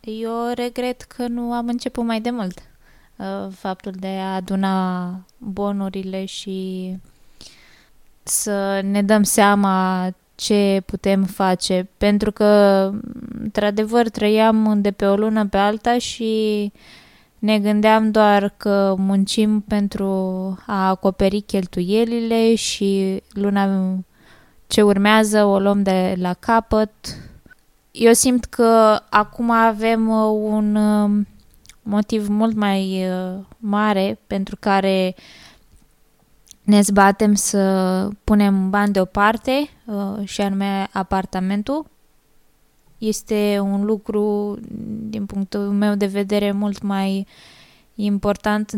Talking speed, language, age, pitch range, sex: 100 wpm, Romanian, 20-39, 195-220 Hz, female